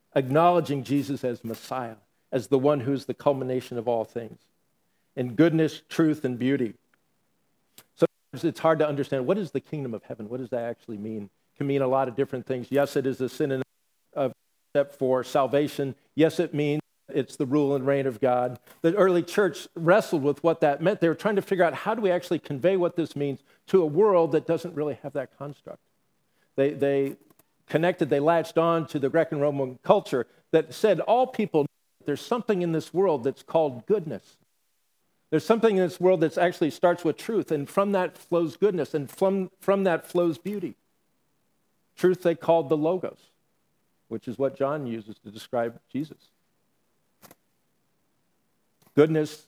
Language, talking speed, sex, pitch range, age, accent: English, 185 wpm, male, 130-170 Hz, 50-69, American